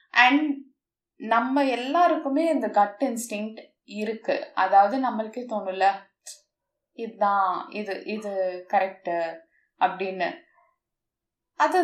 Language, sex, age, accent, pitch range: Tamil, female, 20-39, native, 205-290 Hz